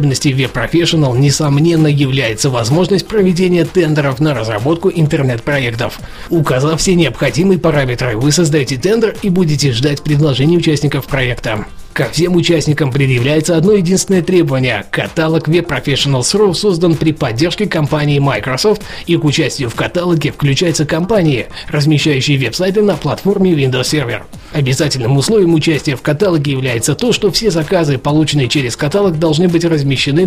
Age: 20-39